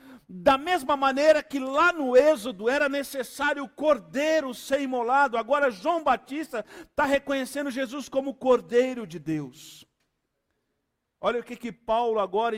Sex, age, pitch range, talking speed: male, 50-69, 225-285 Hz, 145 wpm